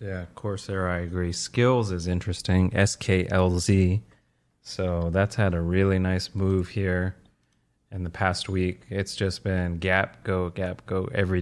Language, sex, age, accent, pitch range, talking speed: English, male, 30-49, American, 90-100 Hz, 145 wpm